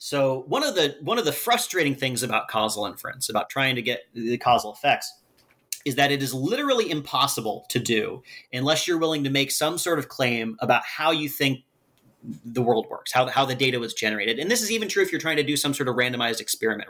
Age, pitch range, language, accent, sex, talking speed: 30-49, 125-155 Hz, English, American, male, 225 wpm